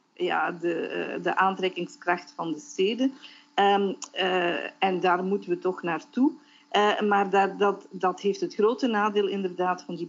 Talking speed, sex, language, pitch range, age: 160 wpm, female, Dutch, 180-215 Hz, 50-69